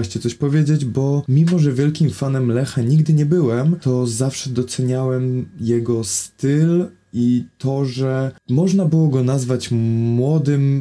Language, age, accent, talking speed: Polish, 20-39, native, 135 wpm